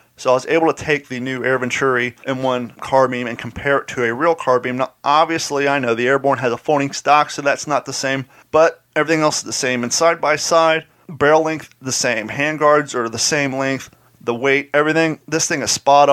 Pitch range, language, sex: 125-150 Hz, English, male